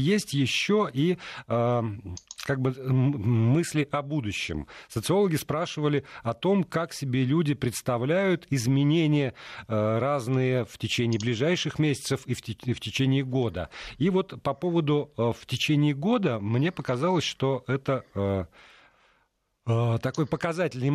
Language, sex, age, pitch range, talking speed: Russian, male, 40-59, 115-155 Hz, 120 wpm